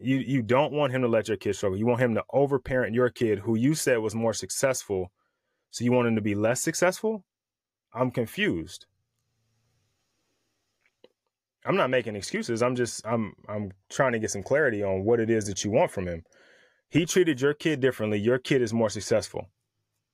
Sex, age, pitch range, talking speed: male, 30-49, 95-120 Hz, 195 wpm